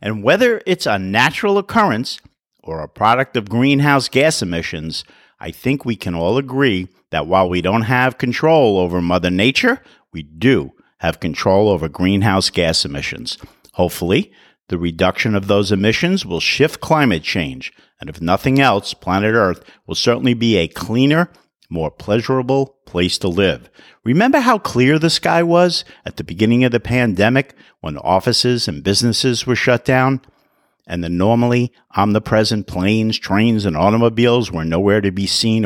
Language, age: English, 50-69